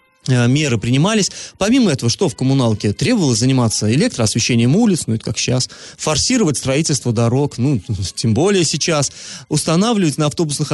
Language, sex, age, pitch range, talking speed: Russian, male, 30-49, 120-160 Hz, 140 wpm